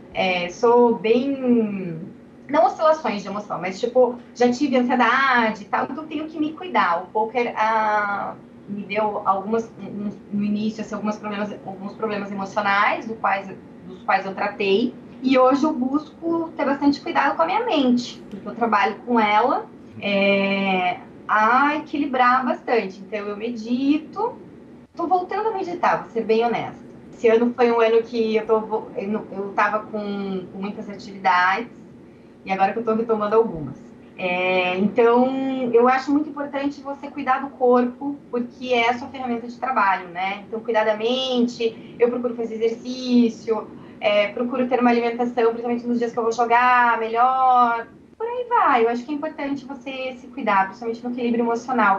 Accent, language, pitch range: Brazilian, Portuguese, 210-260 Hz